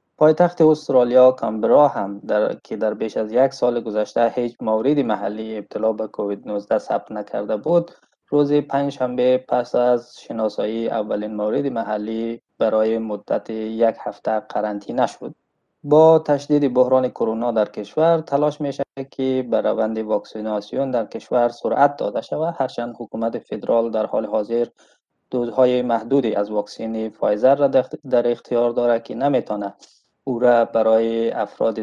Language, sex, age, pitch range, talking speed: Persian, male, 20-39, 110-135 Hz, 140 wpm